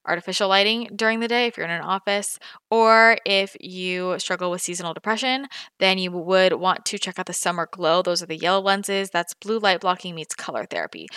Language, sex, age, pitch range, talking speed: English, female, 20-39, 175-220 Hz, 210 wpm